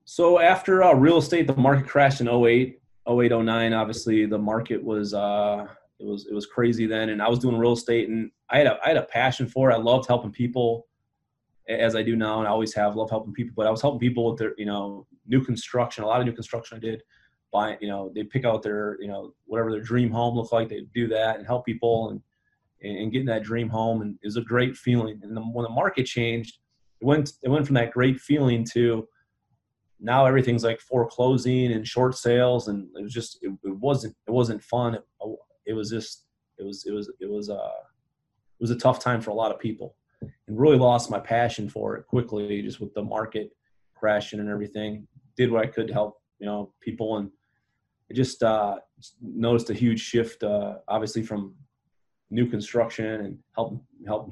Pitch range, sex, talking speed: 105-120 Hz, male, 220 wpm